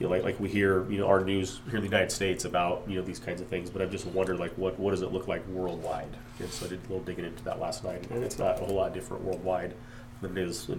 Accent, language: American, English